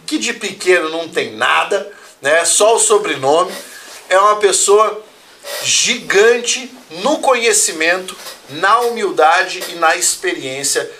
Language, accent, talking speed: Portuguese, Brazilian, 115 wpm